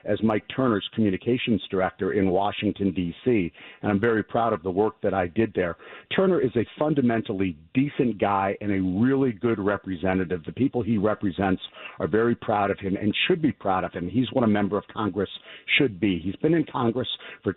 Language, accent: English, American